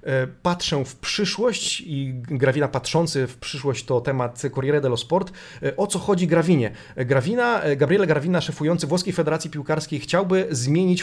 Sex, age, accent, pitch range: male, 30-49, native, 135-165 Hz